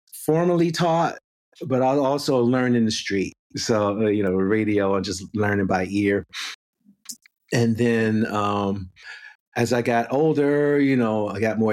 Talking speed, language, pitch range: 155 wpm, English, 100-125 Hz